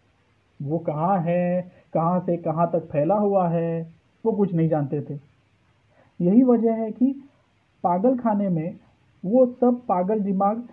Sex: male